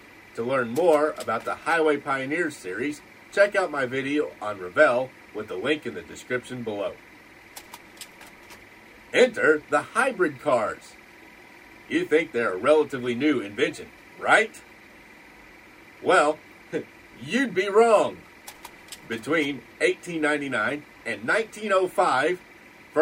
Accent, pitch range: American, 120-190 Hz